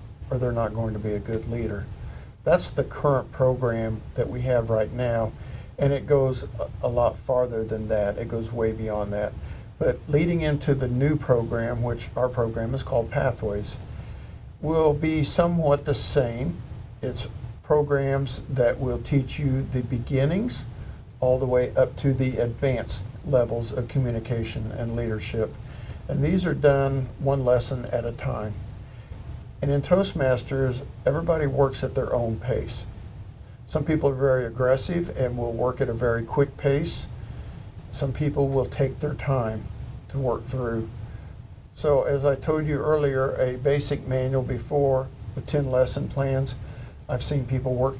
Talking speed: 160 wpm